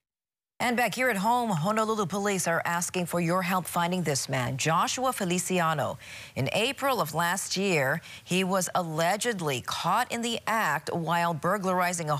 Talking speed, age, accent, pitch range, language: 155 wpm, 40-59, American, 150-210 Hz, English